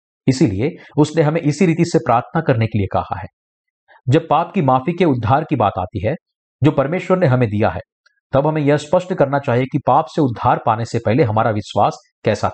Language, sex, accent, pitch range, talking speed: Hindi, male, native, 125-160 Hz, 210 wpm